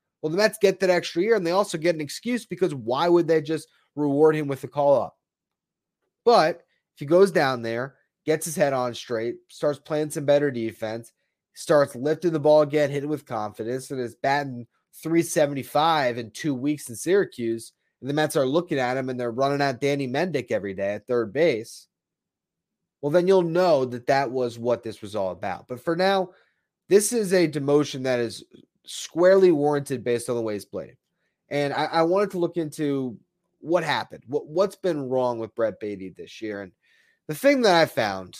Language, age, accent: English, 30-49, American